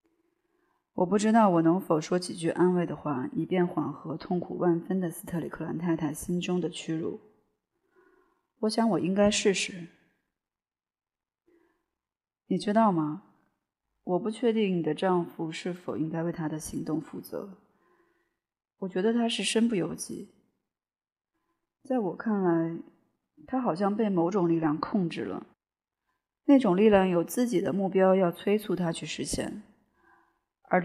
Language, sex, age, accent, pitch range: Chinese, female, 20-39, native, 175-240 Hz